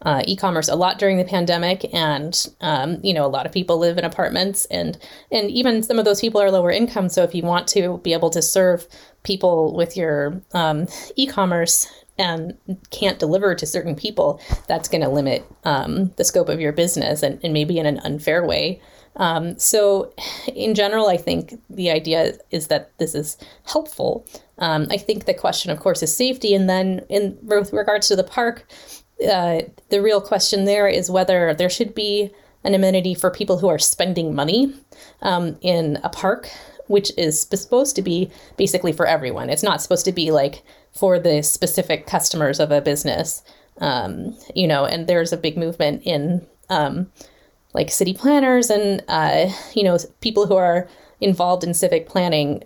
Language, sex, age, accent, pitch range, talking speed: English, female, 30-49, American, 165-200 Hz, 185 wpm